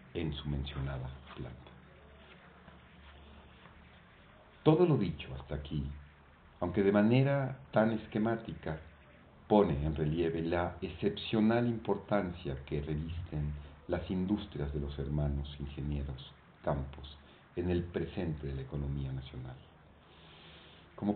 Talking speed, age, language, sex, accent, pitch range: 105 wpm, 50-69, Spanish, male, Mexican, 70-90 Hz